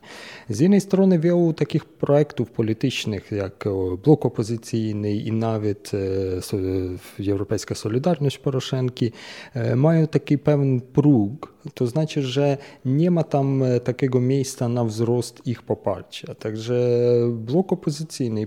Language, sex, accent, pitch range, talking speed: Polish, male, native, 115-145 Hz, 125 wpm